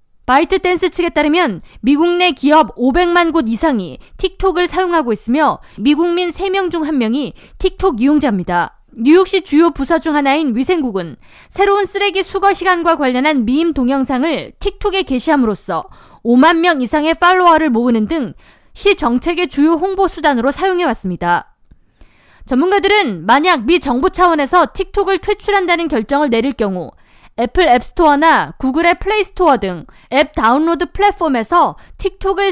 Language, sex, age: Korean, female, 20-39